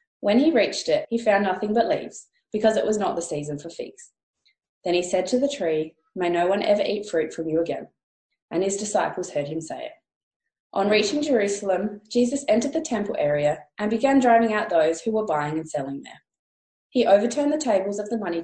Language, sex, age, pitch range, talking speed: English, female, 20-39, 165-245 Hz, 210 wpm